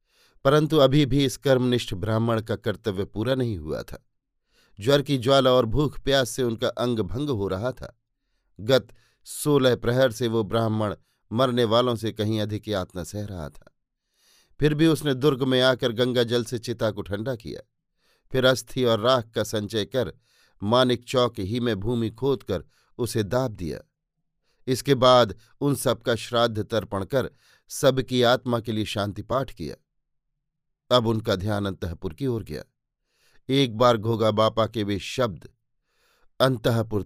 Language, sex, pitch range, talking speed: Hindi, male, 110-135 Hz, 155 wpm